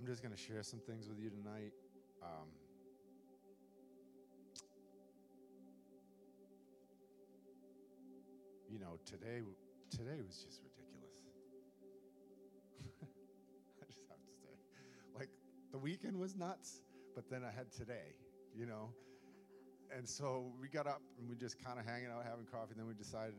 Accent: American